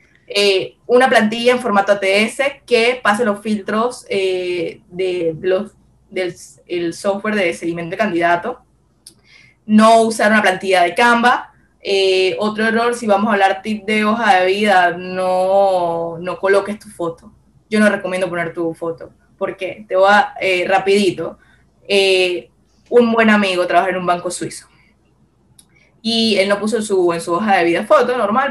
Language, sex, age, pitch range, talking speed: Spanish, female, 20-39, 185-220 Hz, 160 wpm